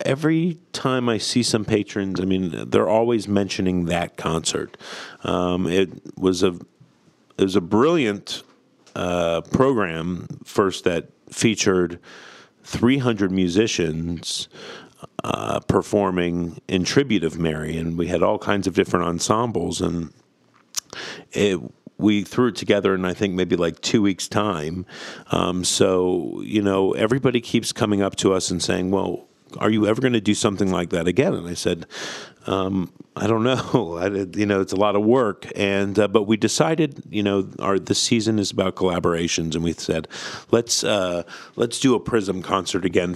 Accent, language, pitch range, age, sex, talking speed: American, English, 90-105 Hz, 50-69, male, 165 wpm